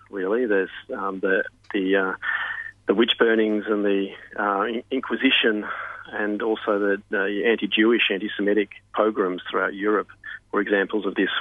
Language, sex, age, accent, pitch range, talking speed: English, male, 40-59, Australian, 100-105 Hz, 135 wpm